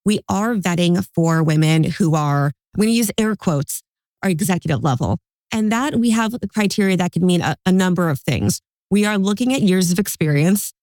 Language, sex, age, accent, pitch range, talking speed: English, female, 30-49, American, 160-195 Hz, 200 wpm